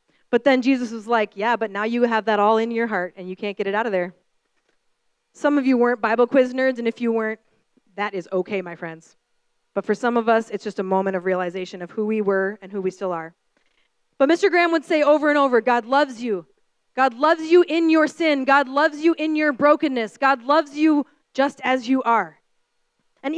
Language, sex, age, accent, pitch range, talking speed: English, female, 20-39, American, 230-315 Hz, 230 wpm